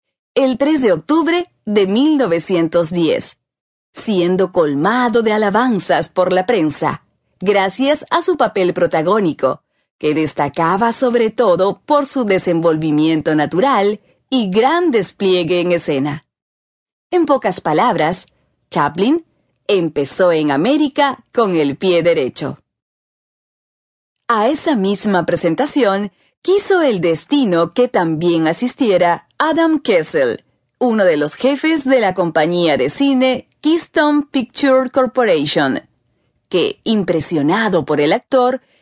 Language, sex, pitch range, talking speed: Spanish, female, 170-285 Hz, 110 wpm